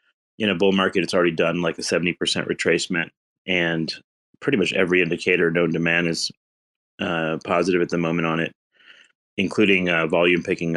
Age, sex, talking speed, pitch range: 30-49, male, 175 wpm, 80-95 Hz